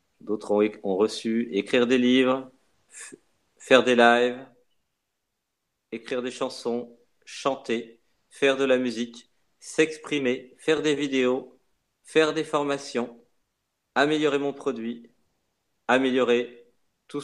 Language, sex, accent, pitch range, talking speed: French, male, French, 115-140 Hz, 110 wpm